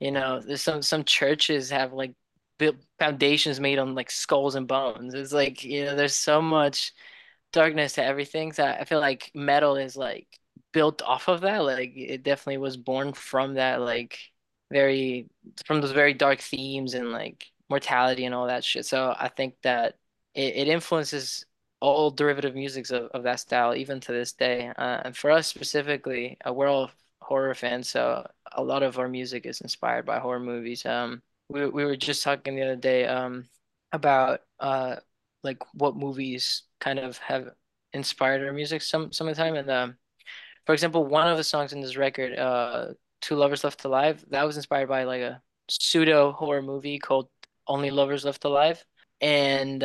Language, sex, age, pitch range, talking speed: English, male, 10-29, 130-150 Hz, 185 wpm